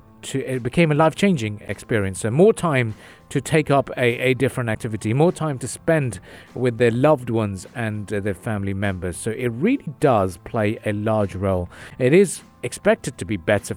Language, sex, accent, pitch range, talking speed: English, male, British, 100-135 Hz, 190 wpm